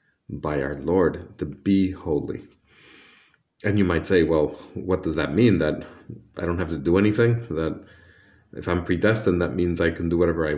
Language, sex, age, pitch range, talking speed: English, male, 40-59, 80-115 Hz, 185 wpm